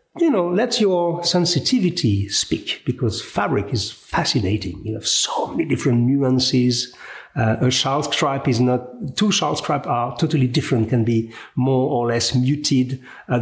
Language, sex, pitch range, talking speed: English, male, 125-195 Hz, 155 wpm